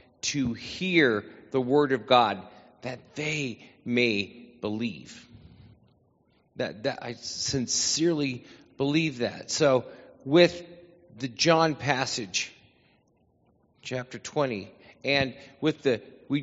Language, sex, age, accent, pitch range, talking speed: English, male, 40-59, American, 130-170 Hz, 100 wpm